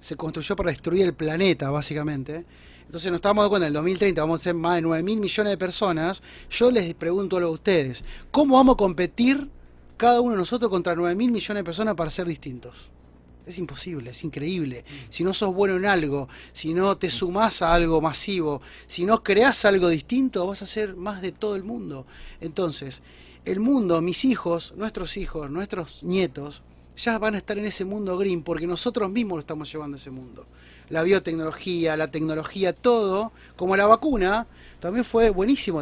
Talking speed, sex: 190 wpm, male